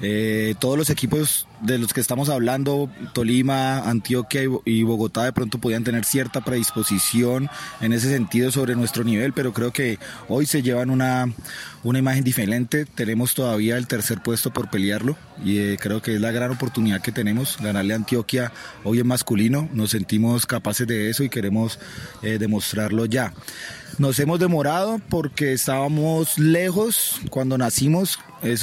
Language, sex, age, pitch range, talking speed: Spanish, male, 30-49, 115-140 Hz, 160 wpm